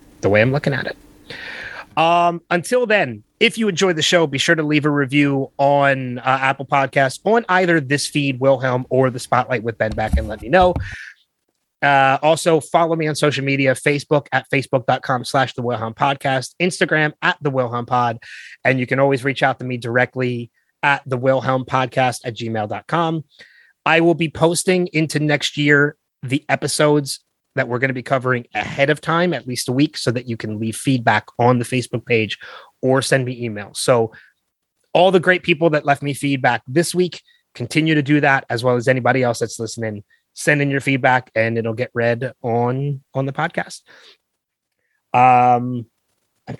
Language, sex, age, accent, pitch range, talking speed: English, male, 30-49, American, 125-160 Hz, 185 wpm